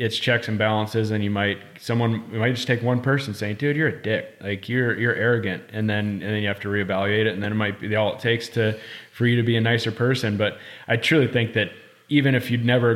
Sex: male